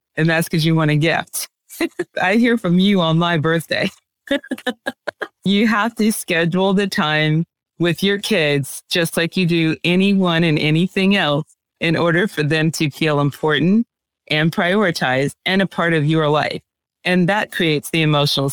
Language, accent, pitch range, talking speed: English, American, 155-200 Hz, 165 wpm